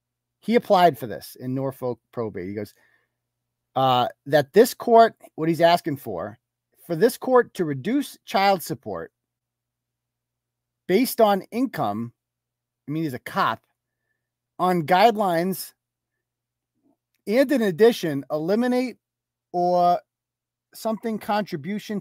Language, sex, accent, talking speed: English, male, American, 110 wpm